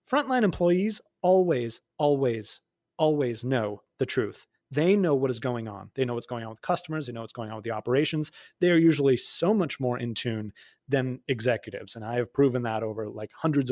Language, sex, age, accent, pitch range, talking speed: English, male, 30-49, American, 115-160 Hz, 205 wpm